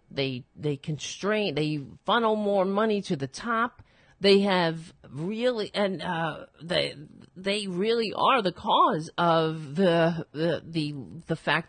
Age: 50-69